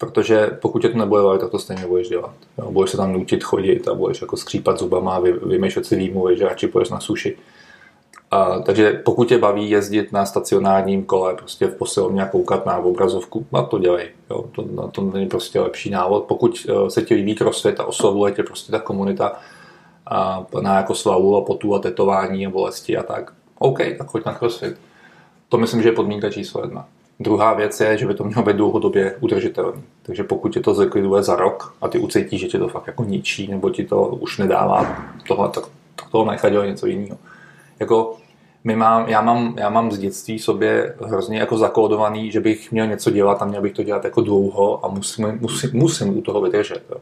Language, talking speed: Czech, 205 wpm